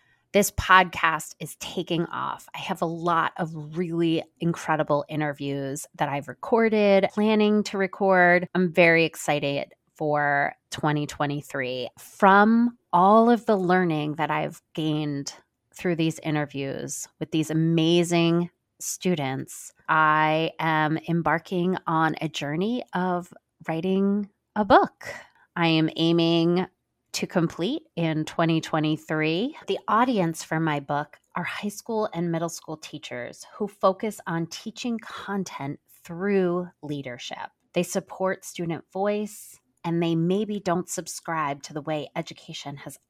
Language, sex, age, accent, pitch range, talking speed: English, female, 30-49, American, 155-190 Hz, 125 wpm